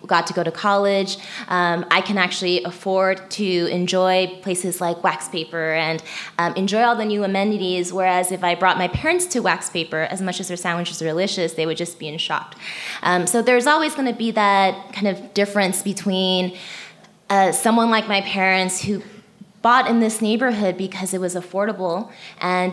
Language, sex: English, female